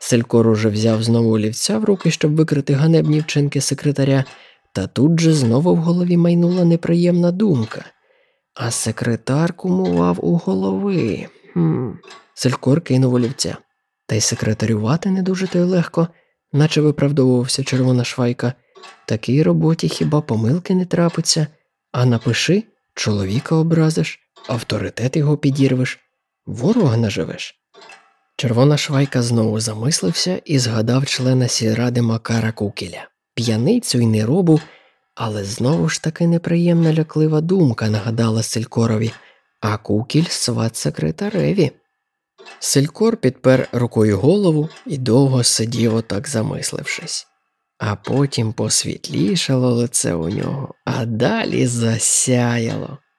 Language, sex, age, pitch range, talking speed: Ukrainian, male, 20-39, 115-160 Hz, 115 wpm